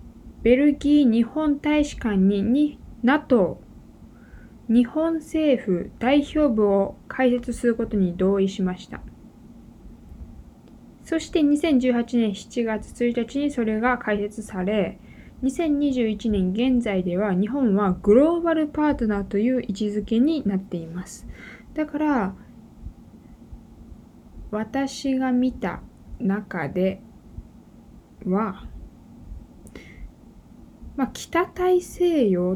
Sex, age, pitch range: female, 20-39, 200-270 Hz